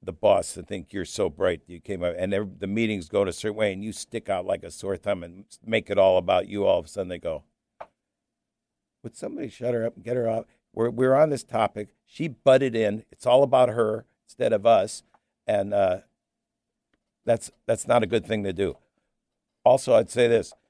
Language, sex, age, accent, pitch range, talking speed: English, male, 60-79, American, 95-120 Hz, 225 wpm